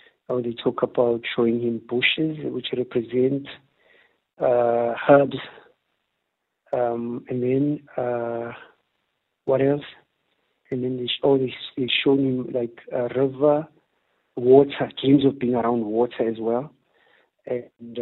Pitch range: 120-135 Hz